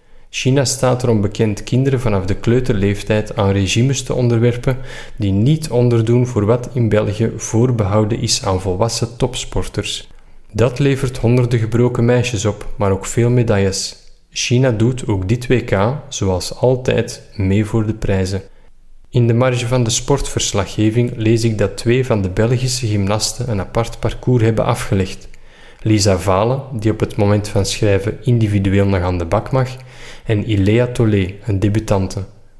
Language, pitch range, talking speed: Dutch, 100-125 Hz, 155 wpm